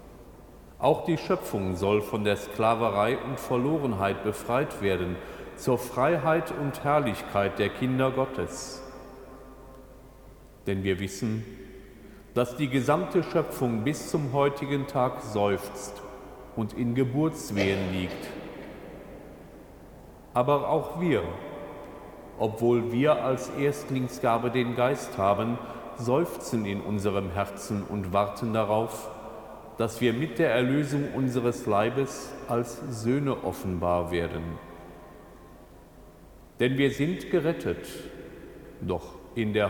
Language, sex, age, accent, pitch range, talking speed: German, male, 40-59, German, 100-130 Hz, 105 wpm